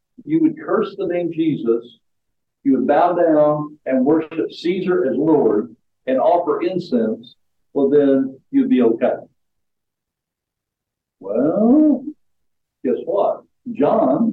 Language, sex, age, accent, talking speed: English, male, 60-79, American, 115 wpm